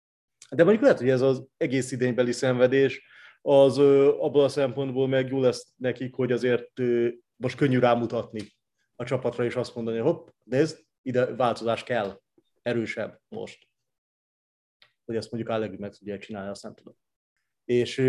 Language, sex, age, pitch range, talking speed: Hungarian, male, 30-49, 110-135 Hz, 155 wpm